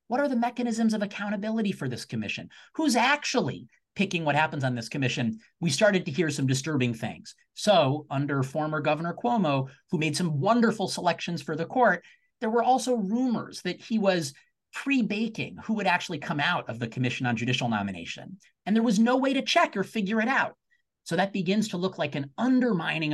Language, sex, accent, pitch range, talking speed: English, male, American, 130-205 Hz, 195 wpm